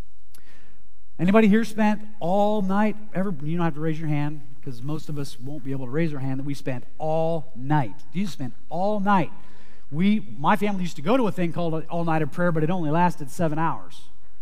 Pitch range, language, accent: 150-205 Hz, English, American